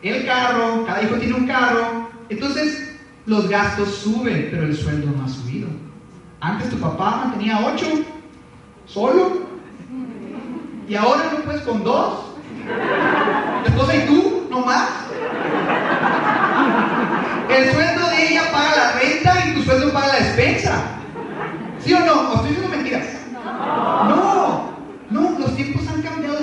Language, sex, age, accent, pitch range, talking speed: Spanish, male, 30-49, Mexican, 205-265 Hz, 140 wpm